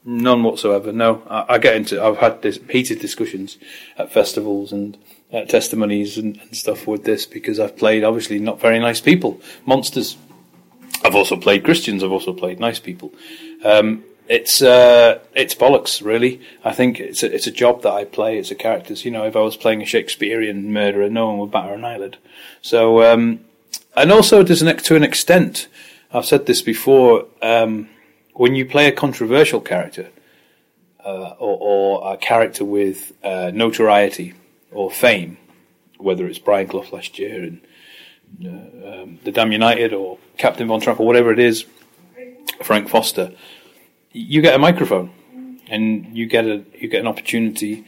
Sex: male